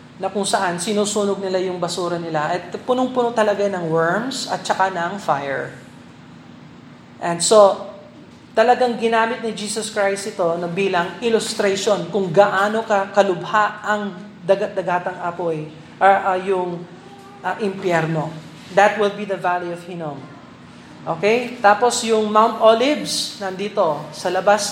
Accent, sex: native, male